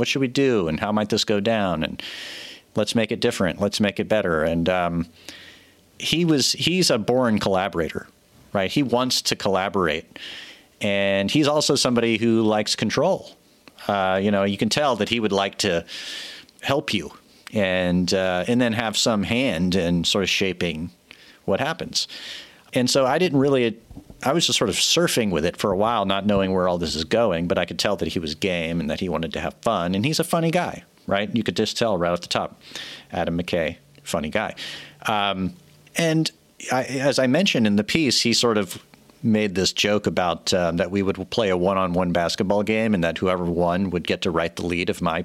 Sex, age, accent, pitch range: male, 40-59, American, 90-120 Hz